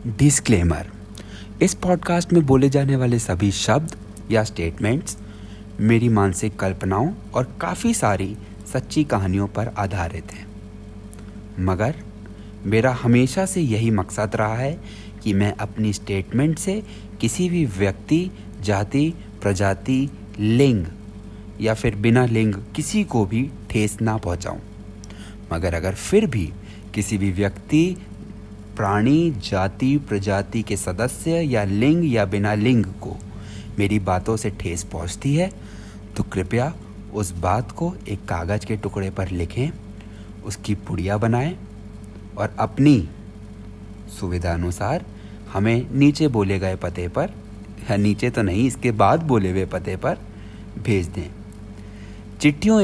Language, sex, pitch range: Hindi, male, 100-120 Hz